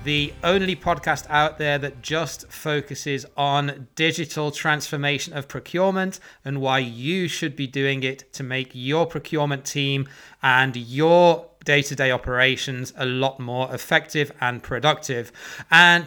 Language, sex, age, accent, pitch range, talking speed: English, male, 30-49, British, 140-165 Hz, 135 wpm